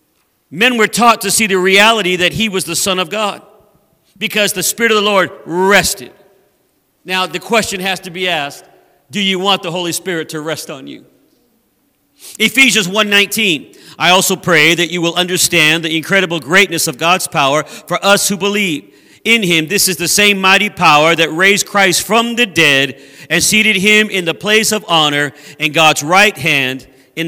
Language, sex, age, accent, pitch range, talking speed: English, male, 50-69, American, 170-215 Hz, 185 wpm